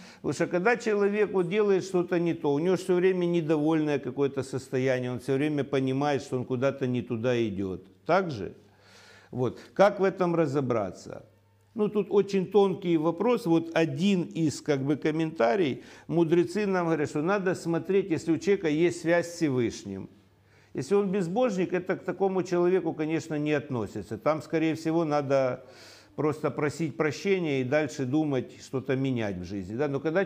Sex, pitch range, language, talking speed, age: male, 130-175 Hz, Russian, 160 wpm, 60-79